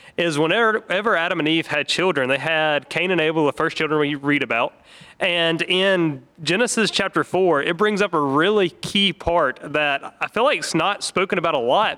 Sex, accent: male, American